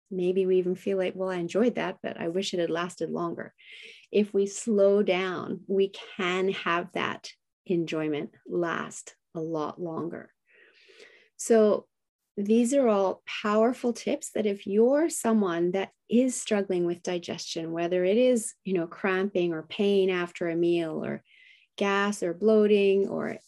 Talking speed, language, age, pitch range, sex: 155 wpm, English, 30-49, 180-220 Hz, female